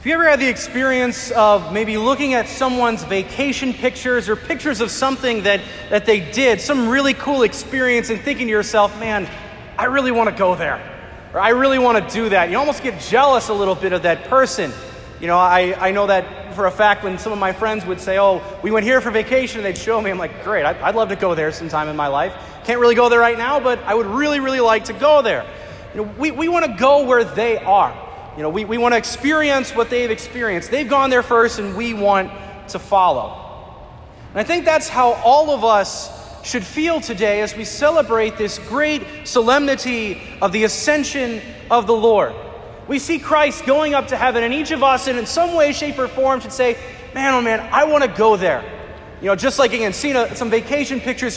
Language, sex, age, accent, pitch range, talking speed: English, male, 30-49, American, 210-270 Hz, 230 wpm